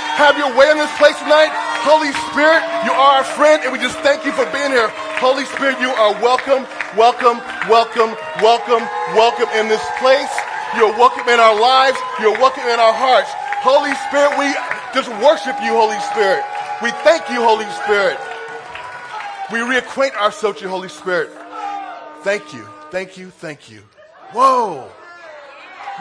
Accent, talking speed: American, 160 wpm